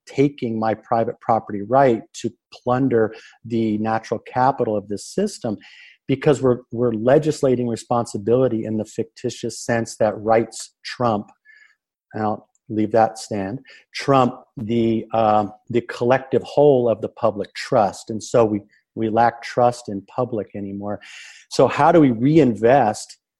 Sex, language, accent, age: male, English, American, 50-69